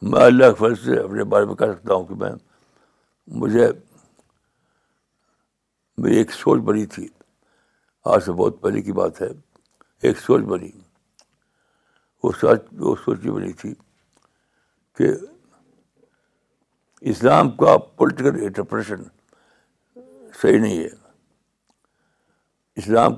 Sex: male